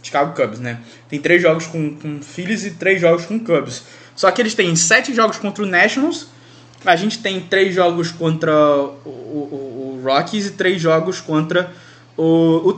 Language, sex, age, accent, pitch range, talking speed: Portuguese, male, 20-39, Brazilian, 145-190 Hz, 185 wpm